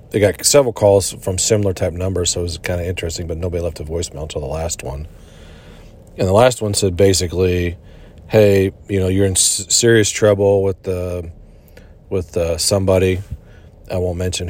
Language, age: English, 40-59